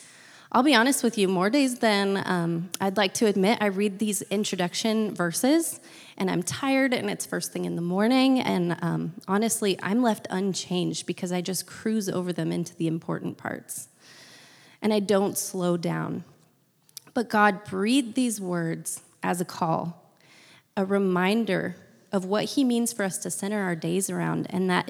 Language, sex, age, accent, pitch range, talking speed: English, female, 20-39, American, 175-215 Hz, 175 wpm